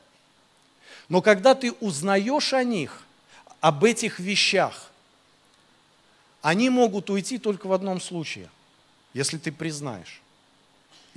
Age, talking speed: 50-69, 100 wpm